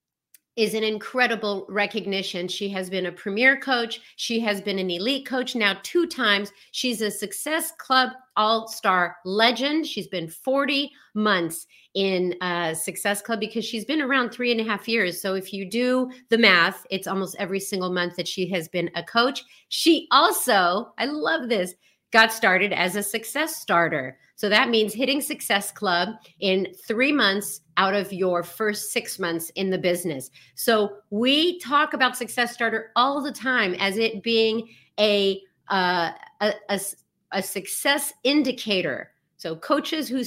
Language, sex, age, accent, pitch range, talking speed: English, female, 40-59, American, 190-250 Hz, 165 wpm